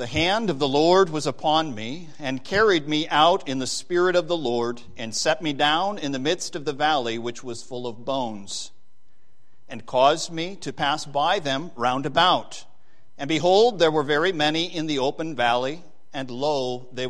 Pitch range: 125-165 Hz